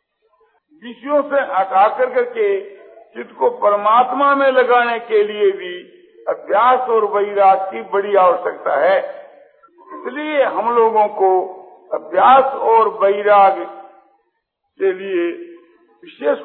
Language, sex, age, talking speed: Hindi, male, 50-69, 100 wpm